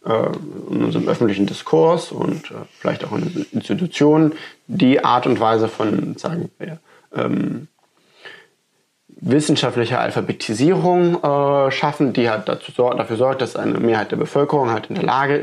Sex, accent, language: male, German, German